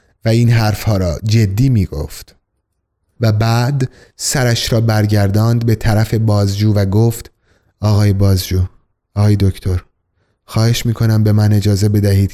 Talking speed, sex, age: 125 wpm, male, 30-49